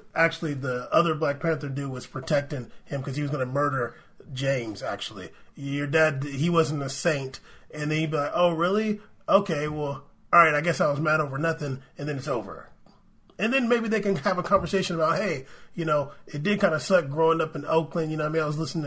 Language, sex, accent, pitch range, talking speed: English, male, American, 145-180 Hz, 240 wpm